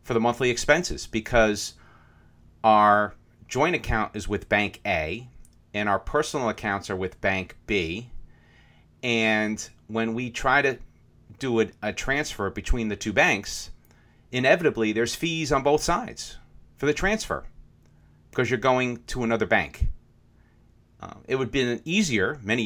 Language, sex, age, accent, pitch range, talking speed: English, male, 40-59, American, 105-125 Hz, 145 wpm